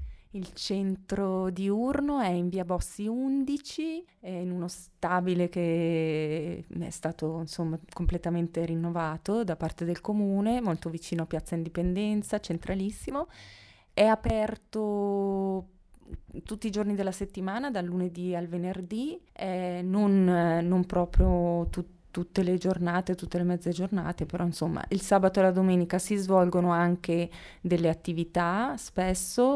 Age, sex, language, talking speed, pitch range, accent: 20-39, female, Italian, 130 wpm, 170-200 Hz, native